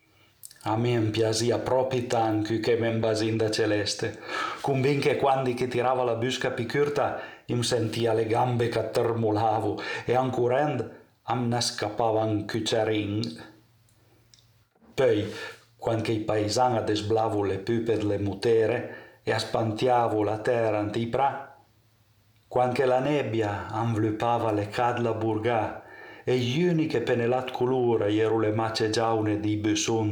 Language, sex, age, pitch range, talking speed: Italian, male, 50-69, 110-120 Hz, 130 wpm